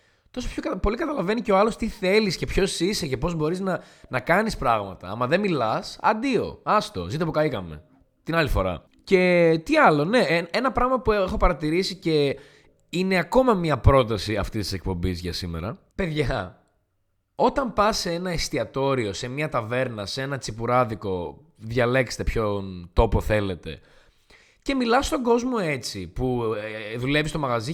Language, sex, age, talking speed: Greek, male, 20-39, 160 wpm